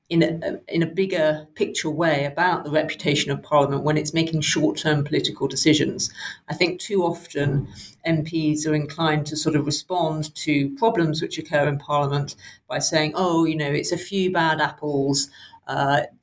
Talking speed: 170 wpm